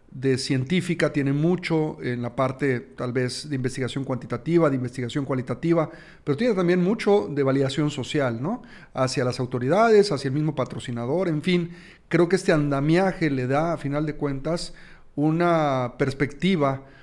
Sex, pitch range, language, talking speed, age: male, 130-170 Hz, Spanish, 155 wpm, 40-59